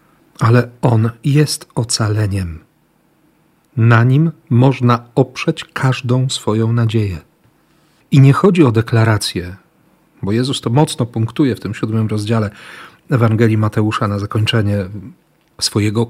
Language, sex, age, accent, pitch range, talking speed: Polish, male, 40-59, native, 110-150 Hz, 110 wpm